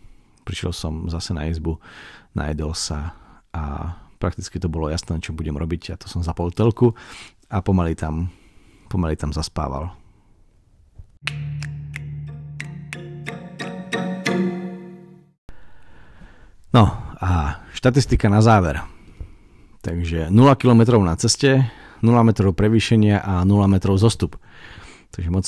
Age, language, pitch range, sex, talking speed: 40-59, Slovak, 90-110 Hz, male, 105 wpm